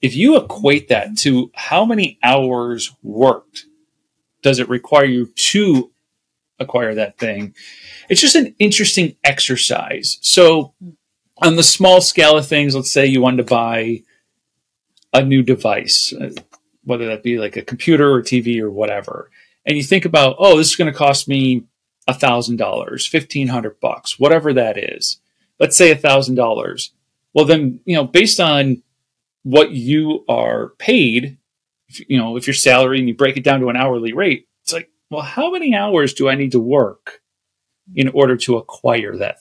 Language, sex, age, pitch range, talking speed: English, male, 40-59, 120-165 Hz, 170 wpm